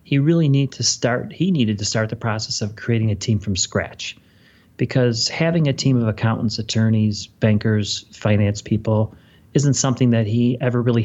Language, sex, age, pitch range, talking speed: English, male, 30-49, 105-120 Hz, 180 wpm